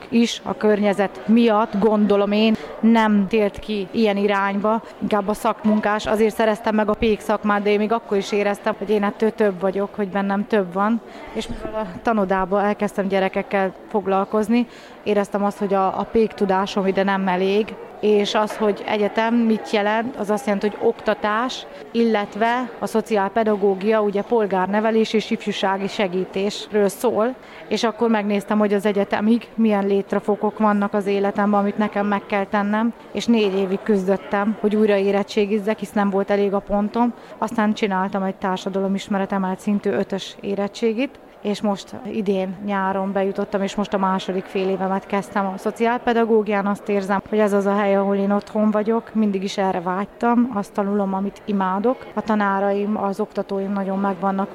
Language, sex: Hungarian, female